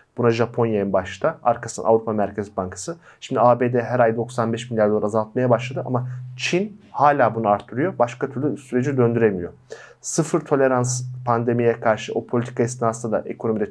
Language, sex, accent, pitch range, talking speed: Turkish, male, native, 115-130 Hz, 155 wpm